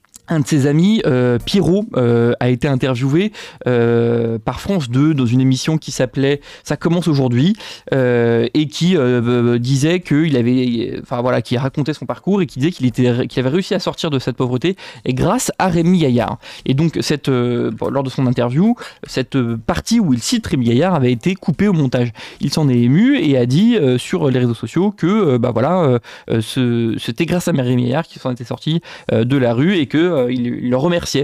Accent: French